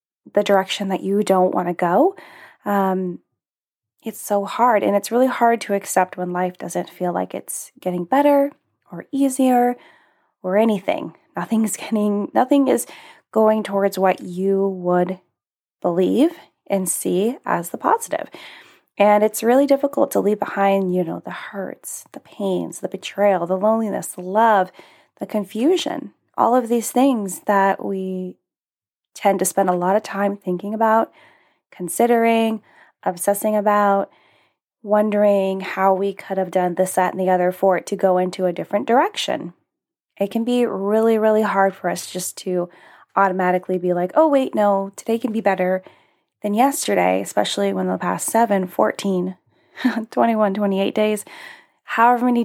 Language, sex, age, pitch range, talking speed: English, female, 20-39, 190-230 Hz, 155 wpm